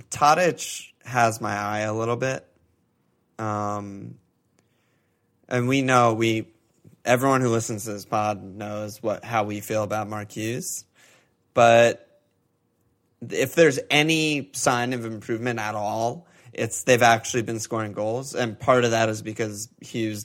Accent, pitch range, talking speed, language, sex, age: American, 105-120 Hz, 140 wpm, English, male, 20-39